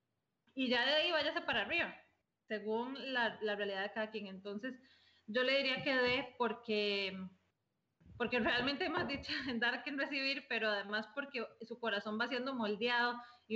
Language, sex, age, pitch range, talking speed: Spanish, female, 20-39, 215-280 Hz, 175 wpm